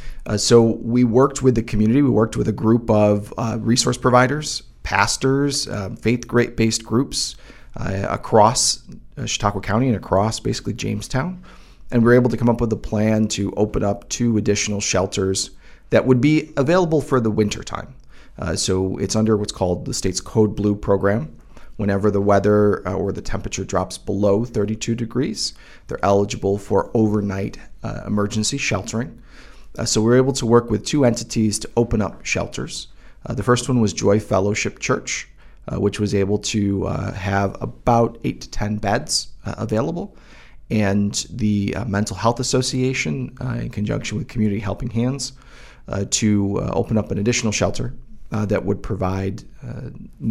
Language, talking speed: English, 170 wpm